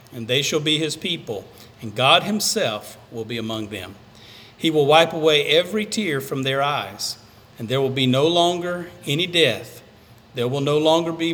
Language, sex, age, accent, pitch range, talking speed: English, male, 50-69, American, 115-165 Hz, 185 wpm